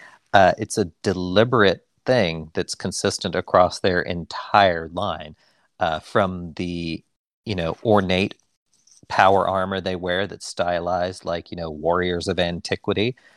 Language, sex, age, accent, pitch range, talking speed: English, male, 40-59, American, 90-110 Hz, 130 wpm